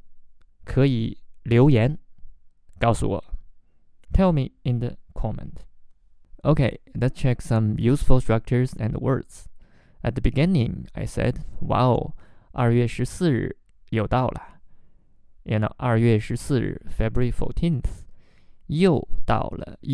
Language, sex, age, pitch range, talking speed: English, male, 20-39, 105-130 Hz, 80 wpm